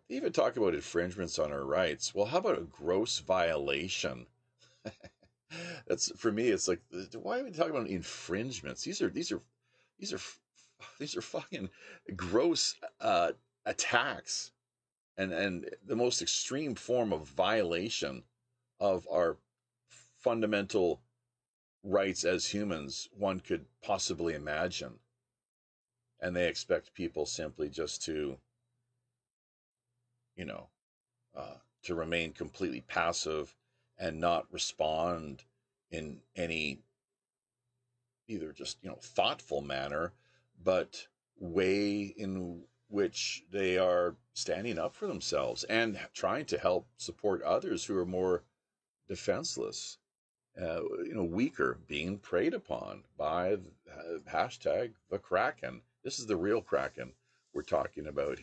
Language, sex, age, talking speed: English, male, 40-59, 120 wpm